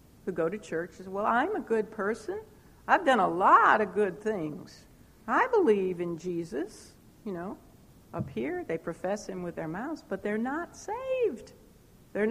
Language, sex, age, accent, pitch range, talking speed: English, female, 60-79, American, 185-250 Hz, 175 wpm